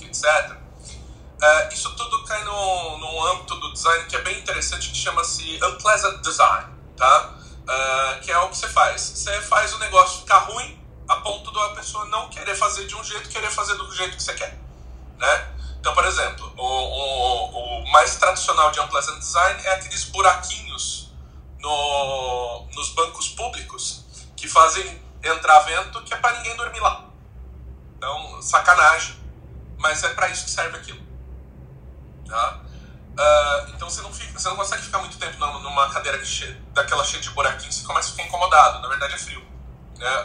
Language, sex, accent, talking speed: Portuguese, male, Brazilian, 175 wpm